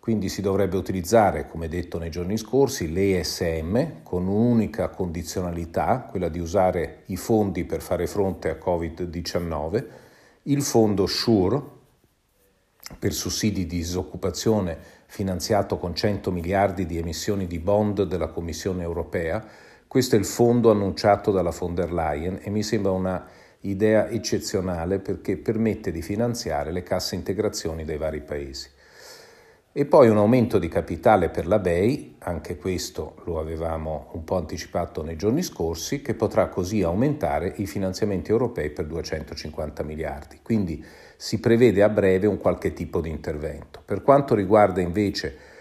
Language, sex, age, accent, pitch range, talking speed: Italian, male, 50-69, native, 85-105 Hz, 140 wpm